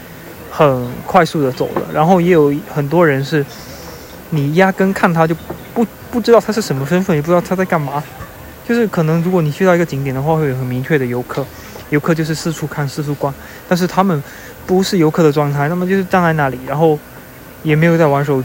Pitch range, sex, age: 135-165 Hz, male, 20-39